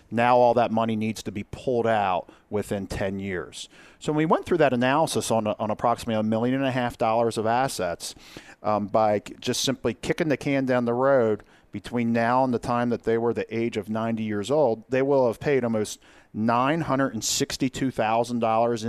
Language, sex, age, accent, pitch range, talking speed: English, male, 40-59, American, 110-135 Hz, 190 wpm